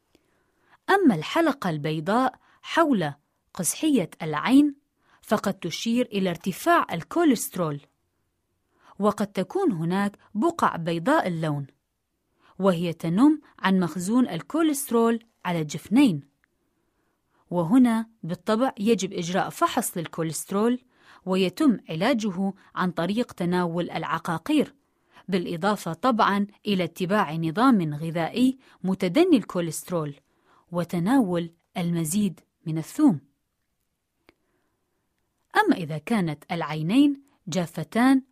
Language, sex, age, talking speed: Arabic, female, 20-39, 85 wpm